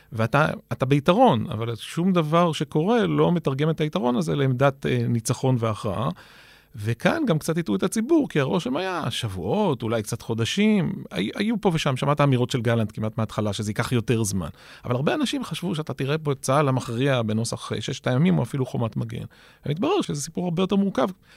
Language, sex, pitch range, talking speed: Hebrew, male, 110-155 Hz, 185 wpm